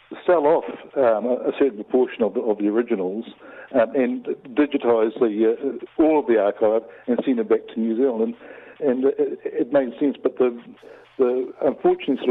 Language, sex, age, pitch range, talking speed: English, male, 60-79, 110-130 Hz, 185 wpm